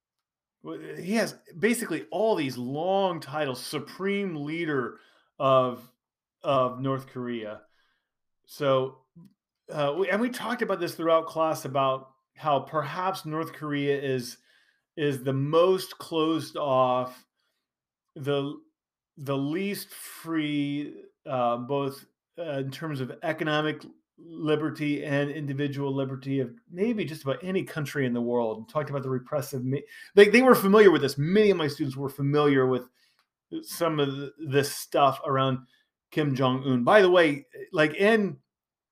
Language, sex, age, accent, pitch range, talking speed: English, male, 40-59, American, 135-170 Hz, 135 wpm